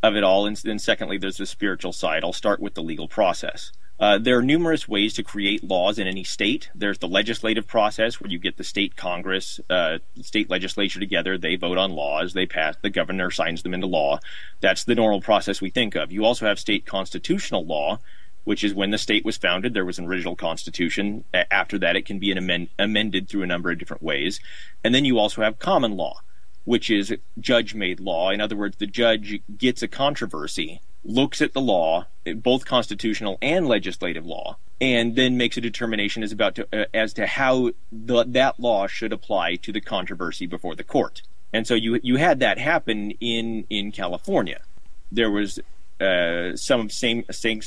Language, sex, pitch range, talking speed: English, male, 95-115 Hz, 200 wpm